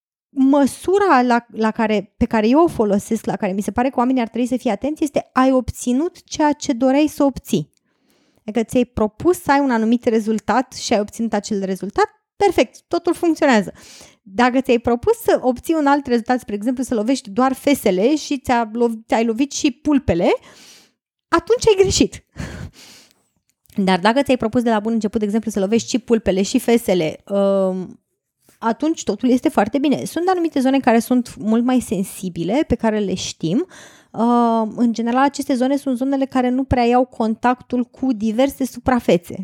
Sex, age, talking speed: female, 20-39, 180 wpm